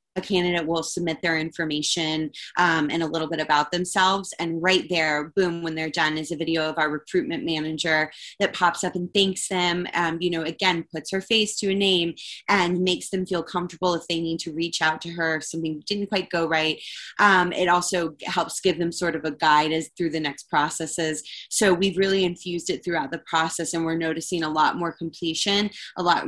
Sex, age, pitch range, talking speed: female, 20-39, 160-185 Hz, 215 wpm